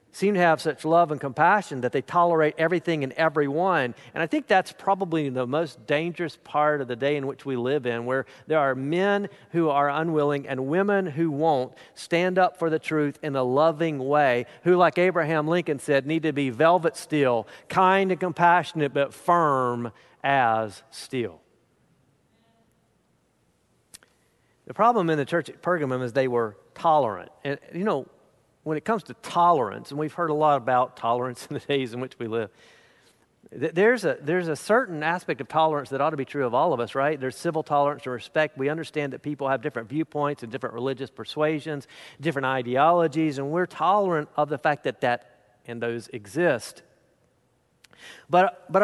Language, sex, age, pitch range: English, male, 50-69, 135-170 Hz